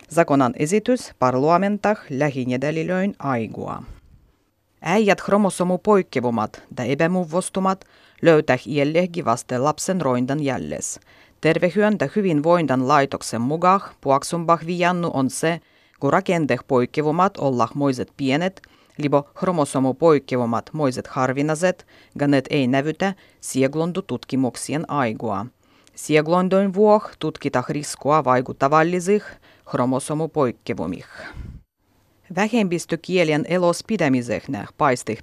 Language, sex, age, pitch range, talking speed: Finnish, female, 30-49, 130-185 Hz, 80 wpm